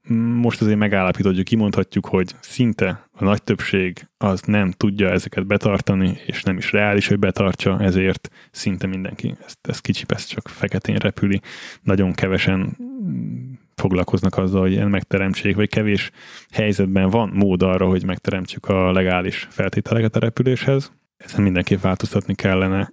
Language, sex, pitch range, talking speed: Hungarian, male, 95-110 Hz, 140 wpm